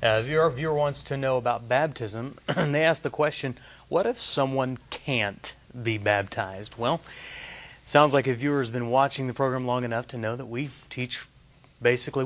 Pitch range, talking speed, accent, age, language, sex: 120-145 Hz, 175 wpm, American, 30-49, English, male